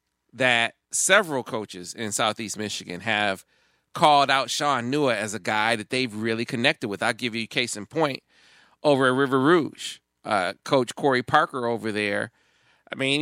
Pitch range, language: 115-145 Hz, English